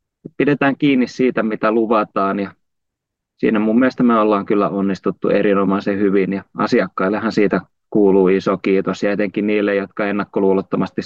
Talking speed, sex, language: 140 wpm, male, Finnish